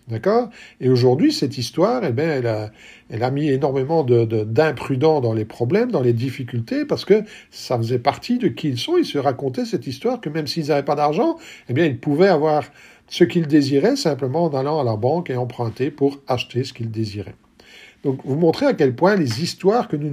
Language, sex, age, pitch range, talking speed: French, male, 50-69, 125-165 Hz, 220 wpm